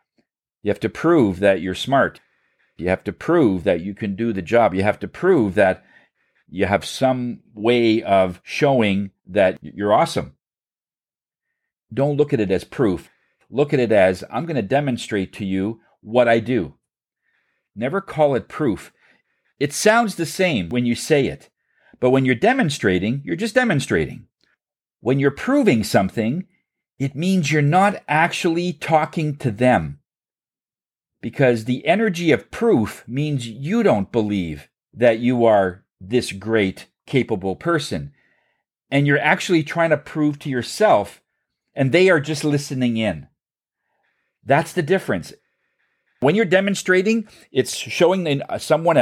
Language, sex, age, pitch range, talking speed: English, male, 40-59, 110-165 Hz, 145 wpm